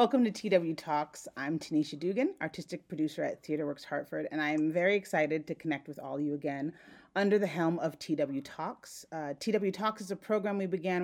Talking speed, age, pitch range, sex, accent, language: 205 wpm, 40-59, 150-195 Hz, female, American, English